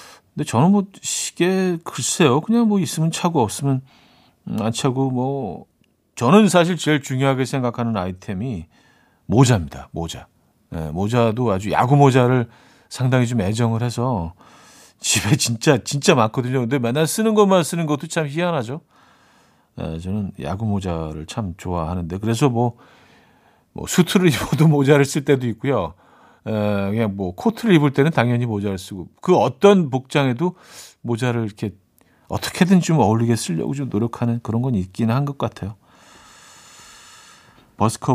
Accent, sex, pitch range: native, male, 110-155 Hz